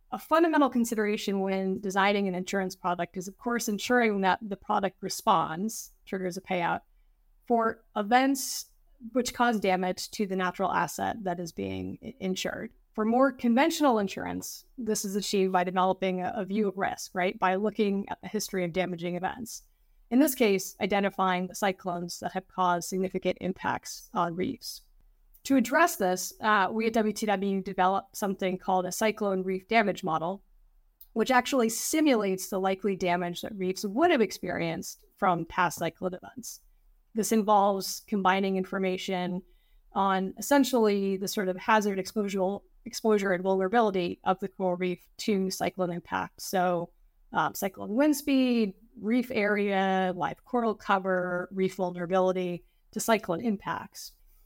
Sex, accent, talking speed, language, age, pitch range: female, American, 145 wpm, English, 30-49, 185-220 Hz